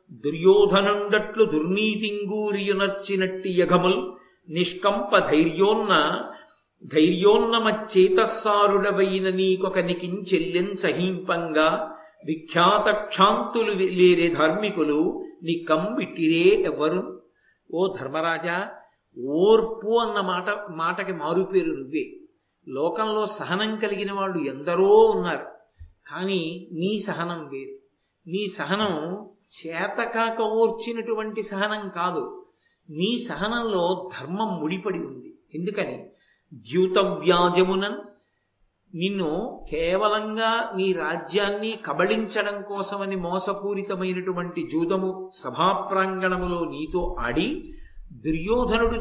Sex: male